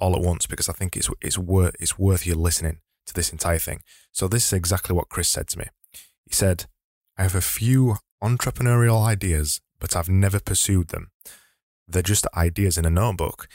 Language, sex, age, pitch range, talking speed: English, male, 20-39, 85-100 Hz, 200 wpm